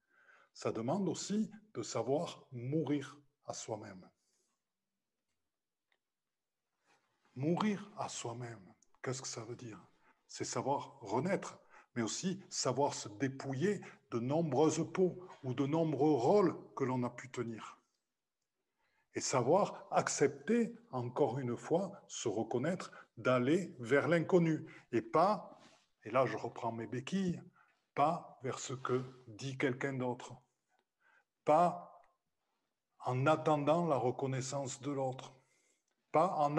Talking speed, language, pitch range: 115 wpm, French, 125-165 Hz